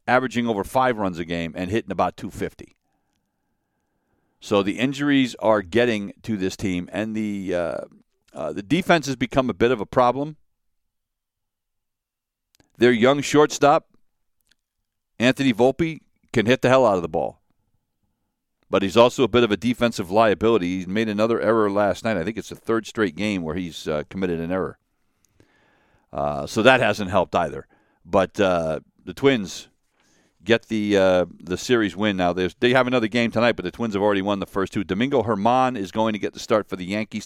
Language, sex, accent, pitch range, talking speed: English, male, American, 95-125 Hz, 180 wpm